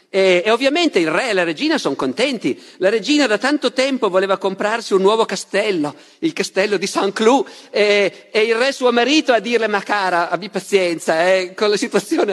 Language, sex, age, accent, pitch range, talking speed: Italian, male, 50-69, native, 175-255 Hz, 200 wpm